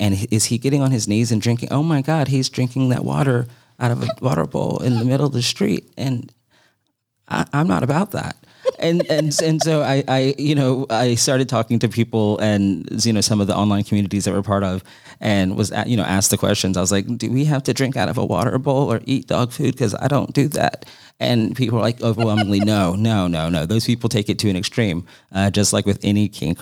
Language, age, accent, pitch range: English, 30-49, American, 90-125 Hz